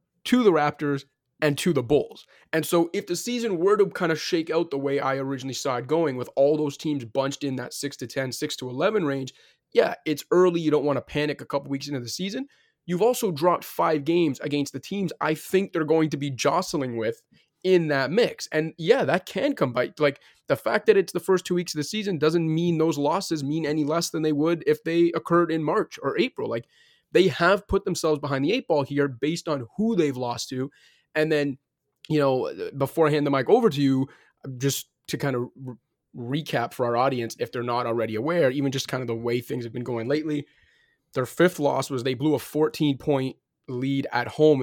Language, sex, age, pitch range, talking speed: English, male, 20-39, 135-170 Hz, 225 wpm